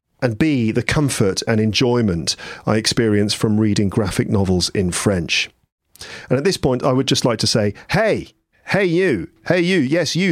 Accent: British